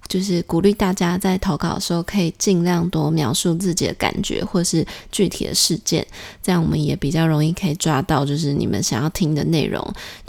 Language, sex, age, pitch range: Chinese, female, 20-39, 150-180 Hz